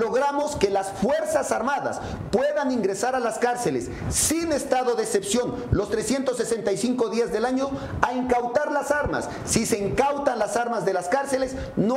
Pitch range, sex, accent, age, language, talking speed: 205-260 Hz, male, Mexican, 40-59, English, 160 wpm